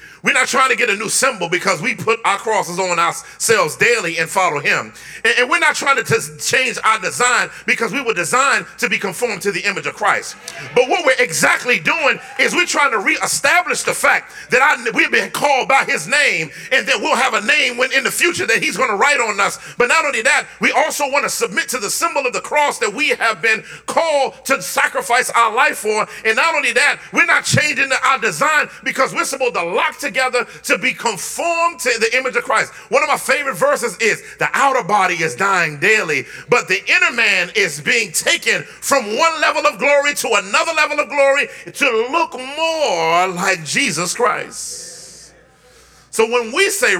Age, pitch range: 40-59, 215-300 Hz